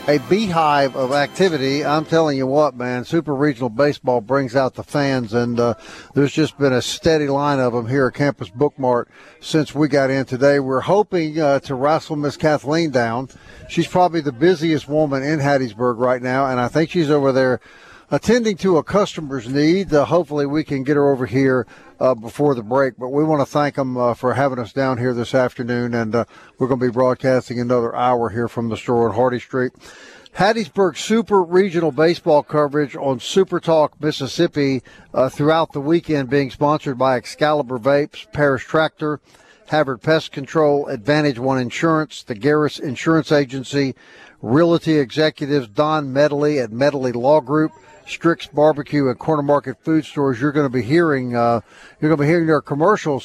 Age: 50-69